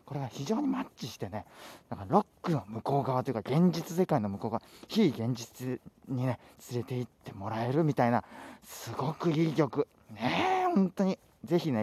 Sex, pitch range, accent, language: male, 110-175 Hz, native, Japanese